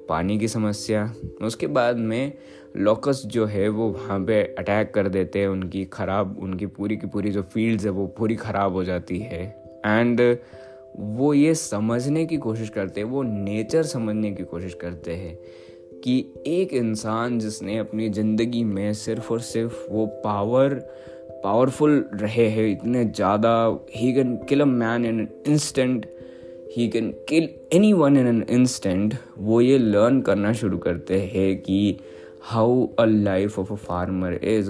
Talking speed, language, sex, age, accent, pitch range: 155 wpm, Hindi, male, 20-39, native, 95-120 Hz